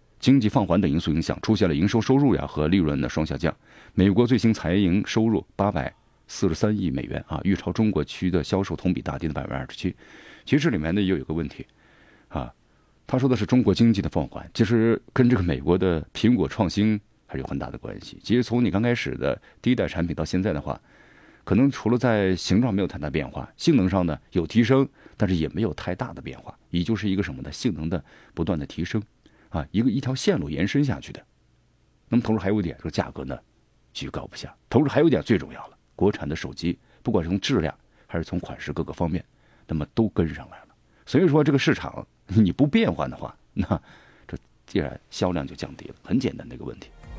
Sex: male